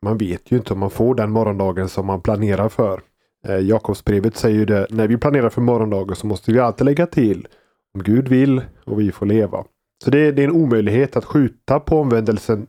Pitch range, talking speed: 110-135 Hz, 215 wpm